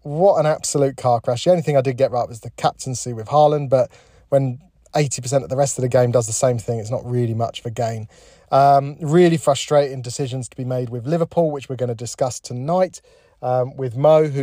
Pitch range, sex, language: 125-150 Hz, male, English